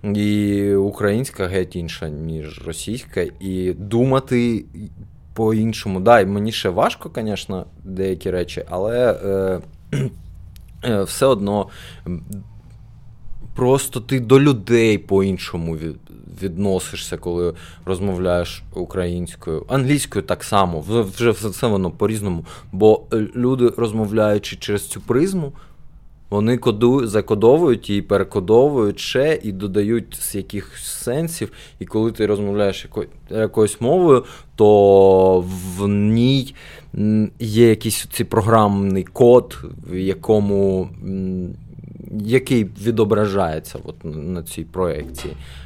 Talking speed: 100 wpm